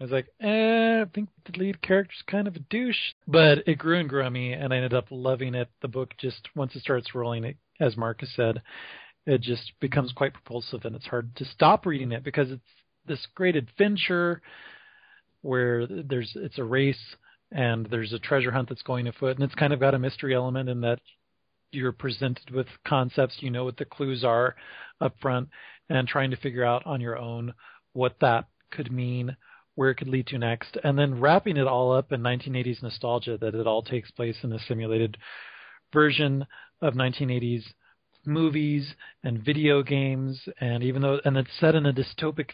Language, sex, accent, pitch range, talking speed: English, male, American, 125-150 Hz, 195 wpm